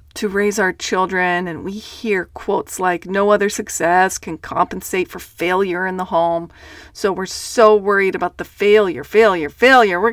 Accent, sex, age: American, female, 40-59